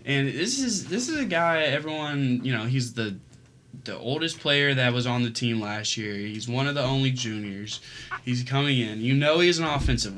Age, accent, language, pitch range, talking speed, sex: 20-39, American, English, 110-130 Hz, 210 wpm, male